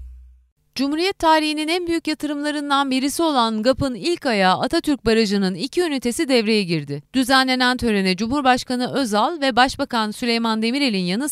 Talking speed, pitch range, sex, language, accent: 135 wpm, 200-285 Hz, female, Turkish, native